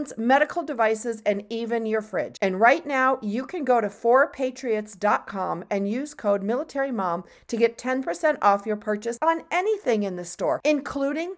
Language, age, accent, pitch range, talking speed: English, 40-59, American, 205-265 Hz, 160 wpm